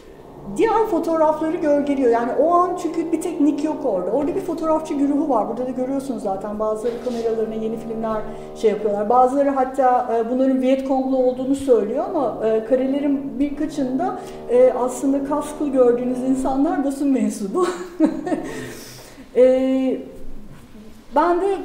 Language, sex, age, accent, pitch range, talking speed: Turkish, female, 50-69, native, 235-300 Hz, 125 wpm